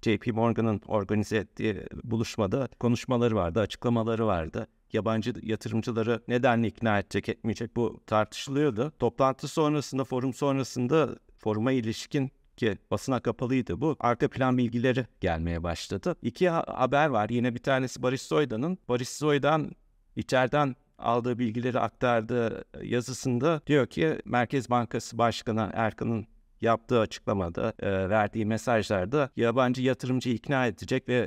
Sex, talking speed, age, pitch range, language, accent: male, 120 wpm, 50-69, 110-130 Hz, Turkish, native